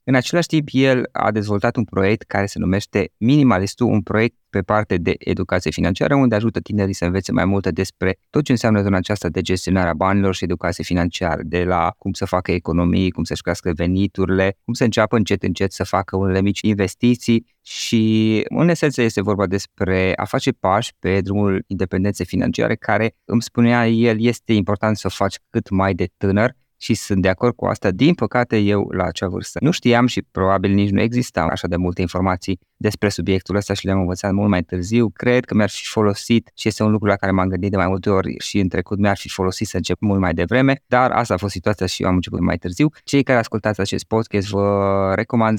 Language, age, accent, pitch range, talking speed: Romanian, 20-39, native, 95-115 Hz, 210 wpm